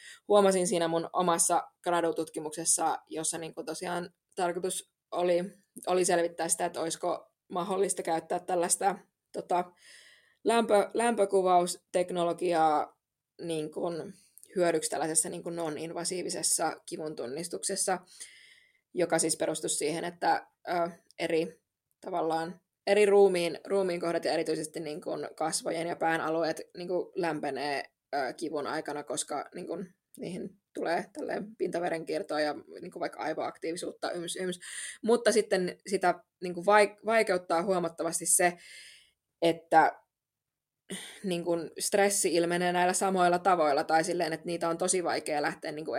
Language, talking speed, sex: Finnish, 115 wpm, female